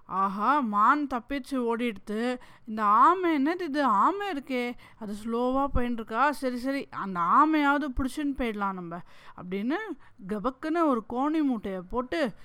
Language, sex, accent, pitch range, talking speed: English, female, Indian, 220-295 Hz, 150 wpm